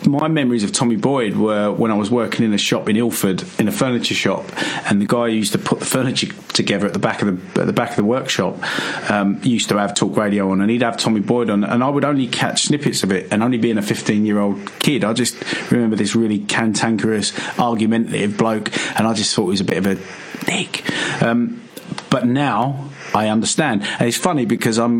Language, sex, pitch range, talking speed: English, male, 110-130 Hz, 235 wpm